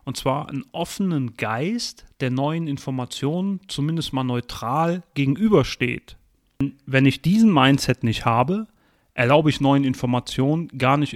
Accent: German